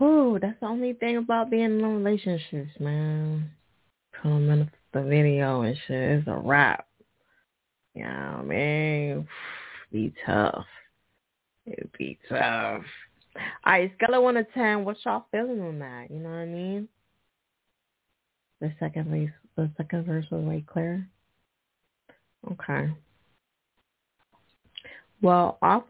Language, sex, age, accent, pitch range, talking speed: English, female, 20-39, American, 145-195 Hz, 130 wpm